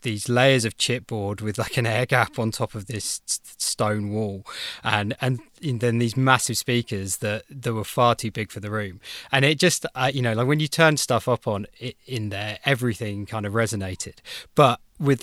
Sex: male